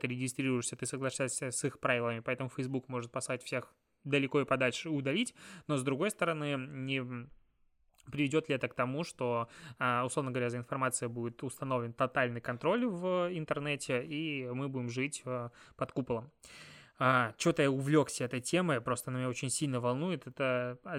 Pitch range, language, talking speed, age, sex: 125-145 Hz, Russian, 155 wpm, 20-39, male